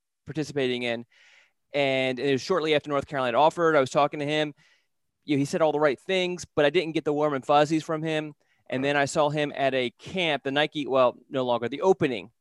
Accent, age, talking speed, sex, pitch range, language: American, 30-49, 220 wpm, male, 130-155 Hz, English